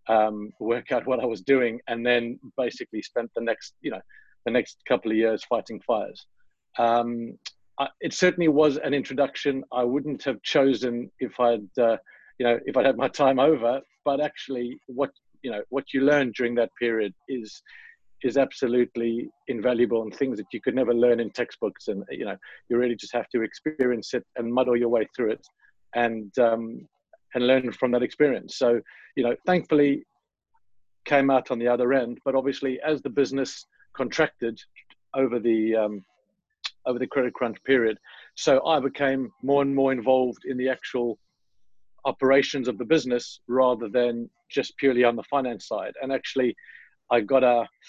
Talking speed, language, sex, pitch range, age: 180 wpm, English, male, 120-135 Hz, 40-59